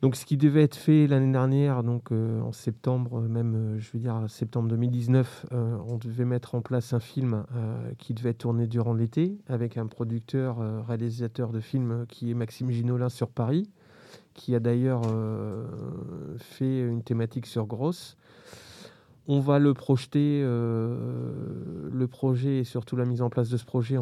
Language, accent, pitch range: French, French, 115-130 Hz